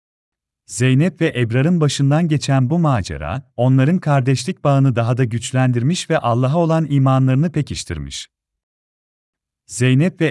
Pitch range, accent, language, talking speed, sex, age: 110-150 Hz, native, Turkish, 115 wpm, male, 40-59